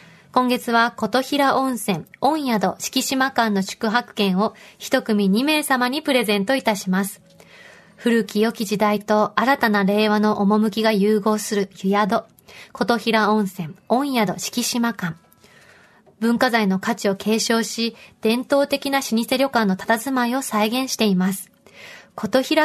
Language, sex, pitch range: Japanese, female, 205-245 Hz